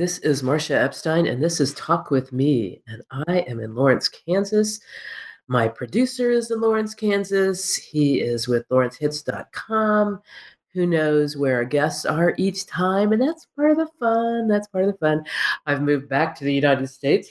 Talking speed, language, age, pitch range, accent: 180 wpm, English, 40-59, 130-175 Hz, American